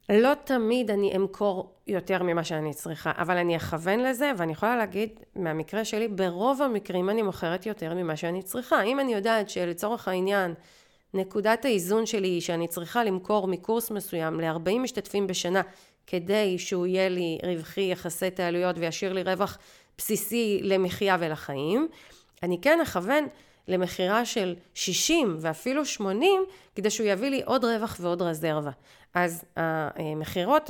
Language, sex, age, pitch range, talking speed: Hebrew, female, 30-49, 180-235 Hz, 145 wpm